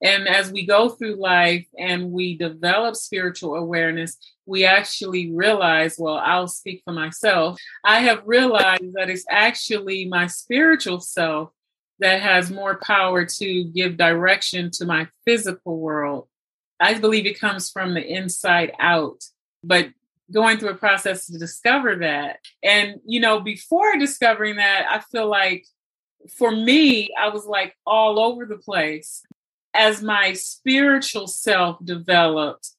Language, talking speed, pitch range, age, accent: English, 145 wpm, 175-215 Hz, 30-49, American